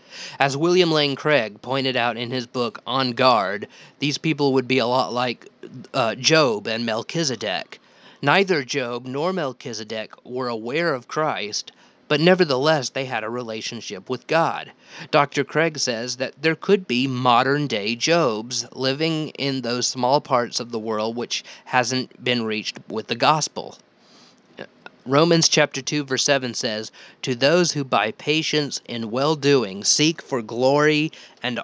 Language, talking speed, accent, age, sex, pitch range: English, 150 wpm, American, 30-49, male, 120-150 Hz